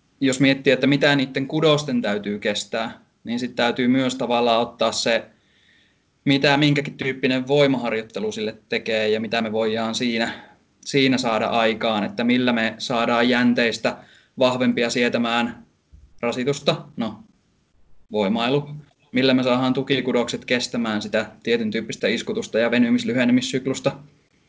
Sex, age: male, 20-39